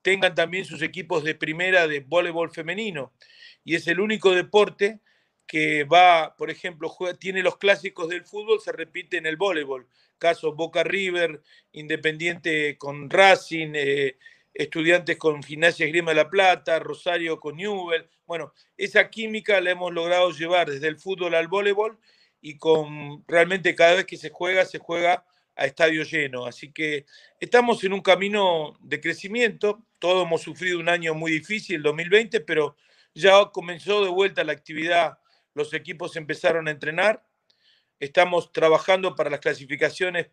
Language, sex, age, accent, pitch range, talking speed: Spanish, male, 40-59, Argentinian, 155-185 Hz, 155 wpm